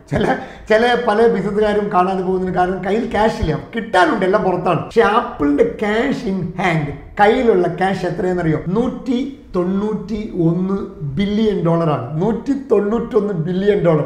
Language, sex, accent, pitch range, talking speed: Malayalam, male, native, 170-225 Hz, 50 wpm